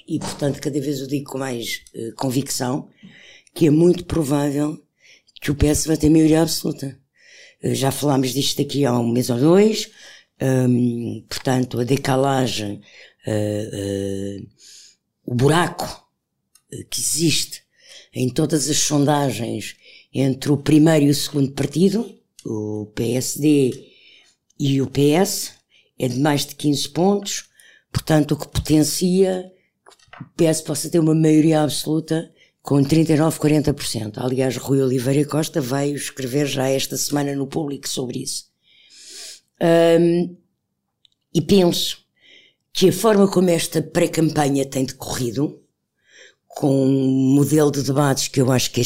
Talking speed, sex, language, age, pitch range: 130 wpm, female, Portuguese, 60-79, 130-155 Hz